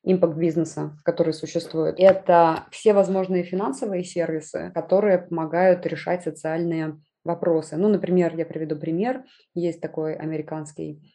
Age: 20-39